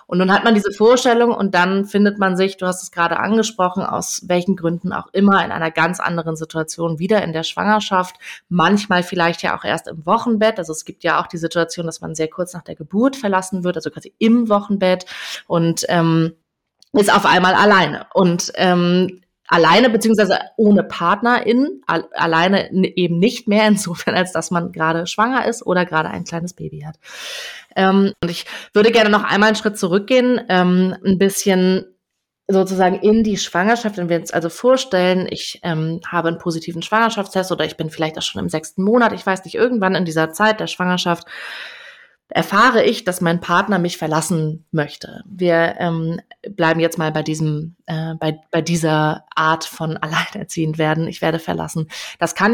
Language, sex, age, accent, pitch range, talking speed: German, female, 30-49, German, 165-205 Hz, 185 wpm